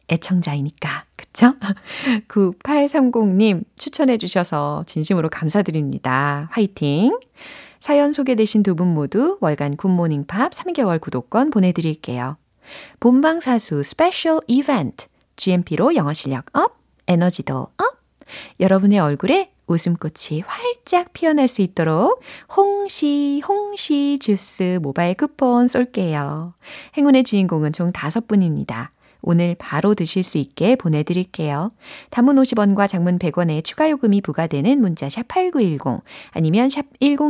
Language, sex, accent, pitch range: Korean, female, native, 170-270 Hz